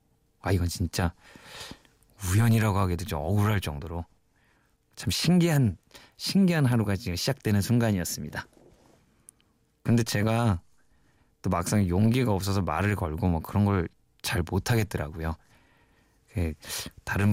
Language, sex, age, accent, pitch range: Korean, male, 20-39, native, 90-115 Hz